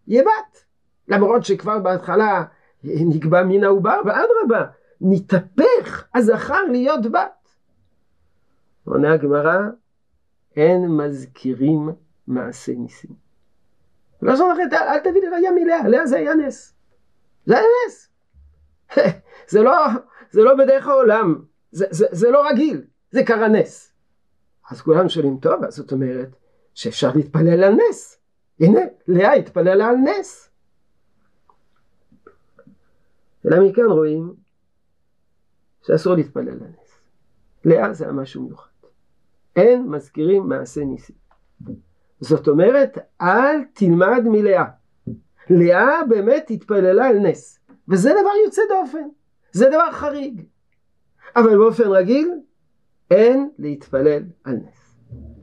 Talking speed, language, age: 100 wpm, Hebrew, 50-69